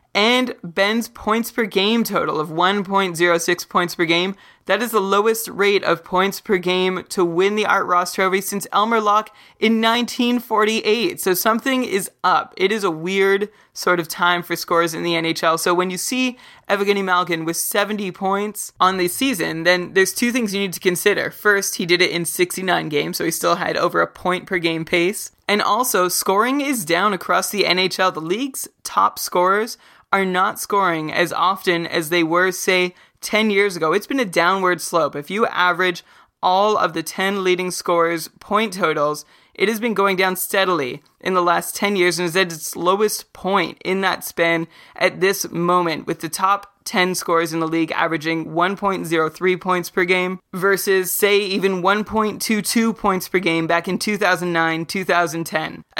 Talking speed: 180 wpm